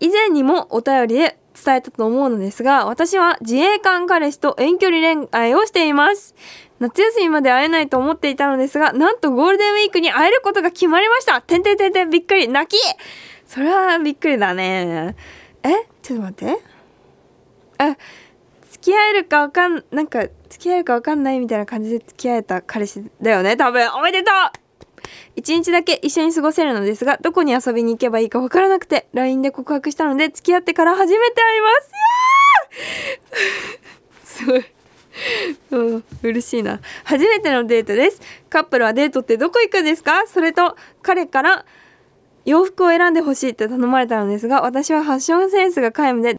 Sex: female